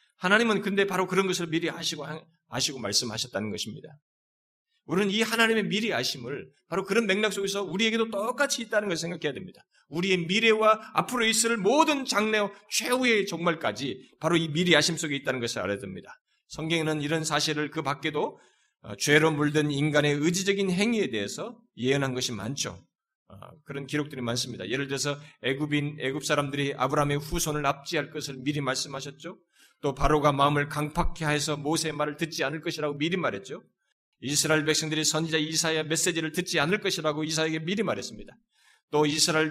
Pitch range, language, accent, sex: 150-200 Hz, Korean, native, male